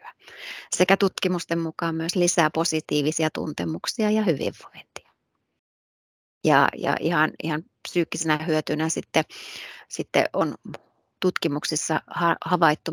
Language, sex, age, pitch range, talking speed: Finnish, female, 30-49, 160-190 Hz, 95 wpm